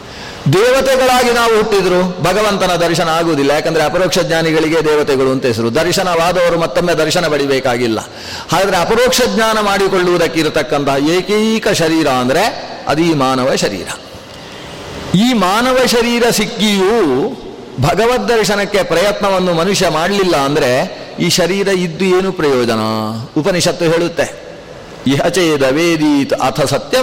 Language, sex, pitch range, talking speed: Kannada, male, 155-205 Hz, 105 wpm